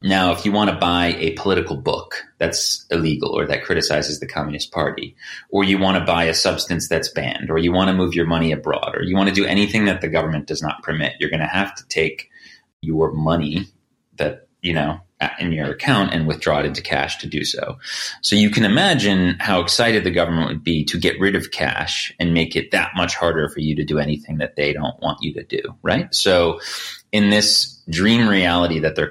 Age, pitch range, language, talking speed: 30-49, 80-95 Hz, English, 225 wpm